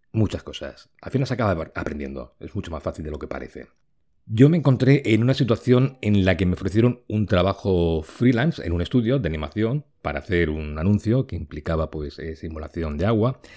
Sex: male